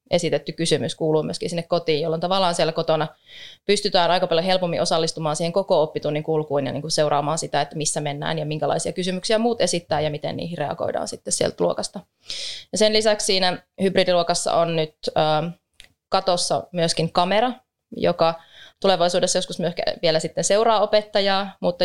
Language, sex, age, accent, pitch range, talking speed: Finnish, female, 20-39, native, 160-185 Hz, 155 wpm